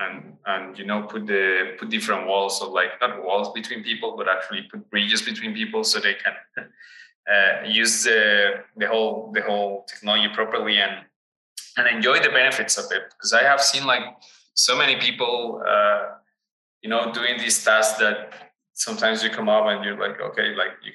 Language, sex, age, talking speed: English, male, 20-39, 185 wpm